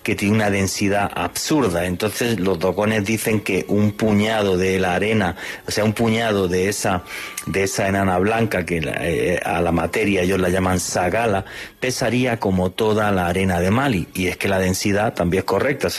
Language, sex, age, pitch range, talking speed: Spanish, male, 30-49, 90-105 Hz, 185 wpm